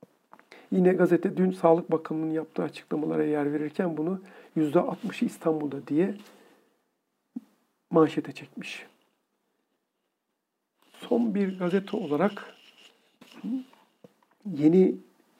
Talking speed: 80 wpm